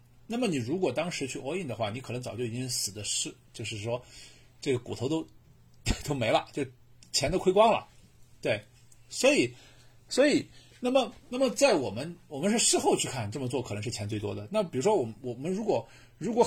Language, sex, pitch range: Chinese, male, 120-170 Hz